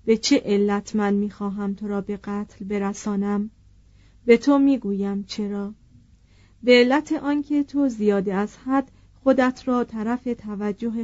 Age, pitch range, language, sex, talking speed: 40-59, 200-245 Hz, Persian, female, 135 wpm